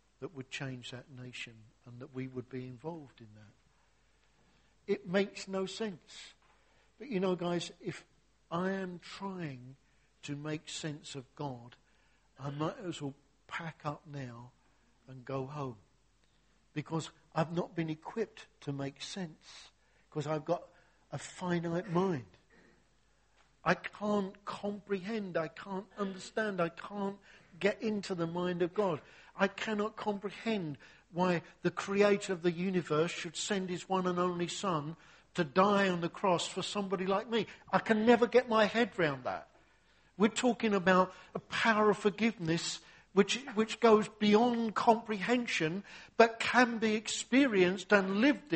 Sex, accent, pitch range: male, British, 155-210 Hz